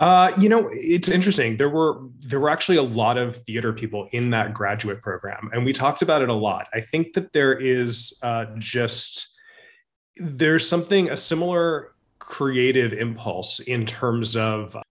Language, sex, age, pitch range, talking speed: English, male, 20-39, 110-135 Hz, 170 wpm